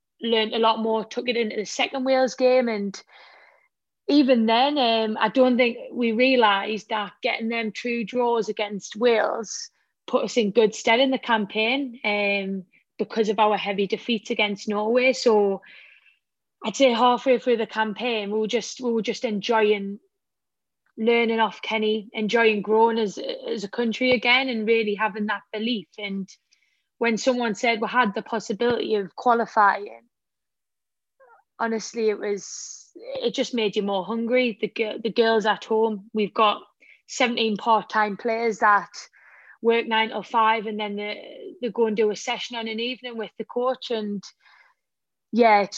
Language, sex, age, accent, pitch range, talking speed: English, female, 20-39, British, 215-240 Hz, 160 wpm